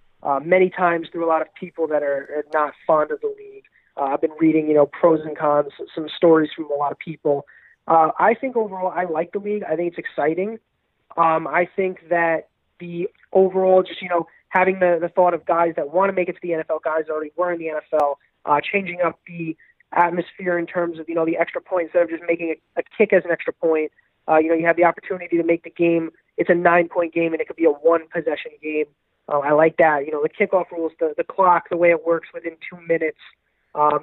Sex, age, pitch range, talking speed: male, 20-39, 160-185 Hz, 245 wpm